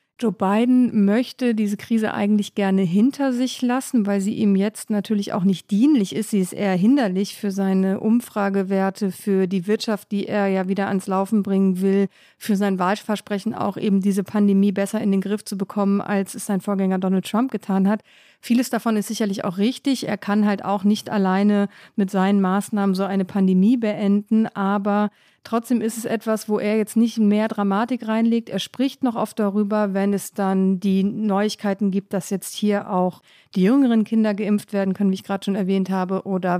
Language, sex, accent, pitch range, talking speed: German, female, German, 195-230 Hz, 190 wpm